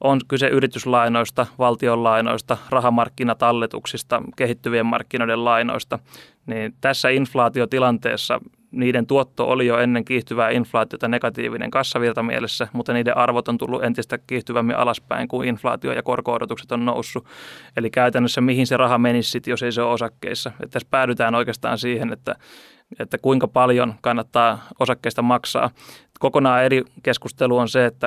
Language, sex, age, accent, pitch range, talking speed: Finnish, male, 20-39, native, 120-130 Hz, 135 wpm